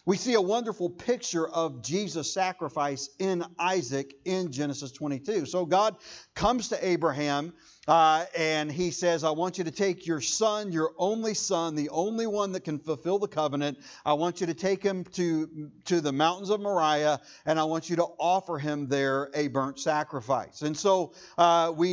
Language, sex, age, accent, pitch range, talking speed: English, male, 50-69, American, 150-190 Hz, 185 wpm